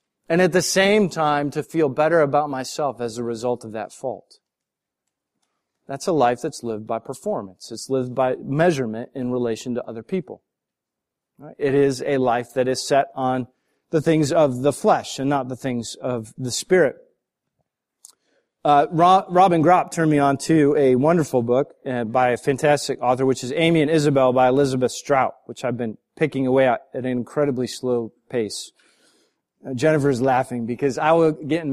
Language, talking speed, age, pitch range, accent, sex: English, 180 wpm, 40-59, 130-165 Hz, American, male